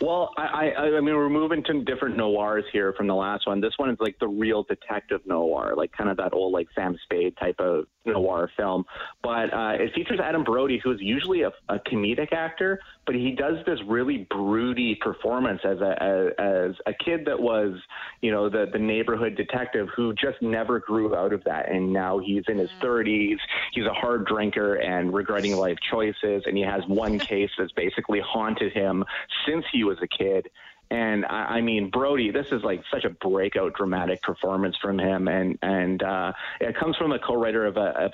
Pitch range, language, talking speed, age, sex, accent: 100-125 Hz, English, 205 wpm, 30-49, male, American